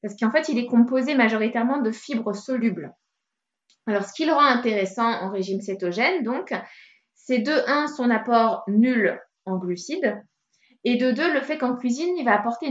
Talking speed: 180 wpm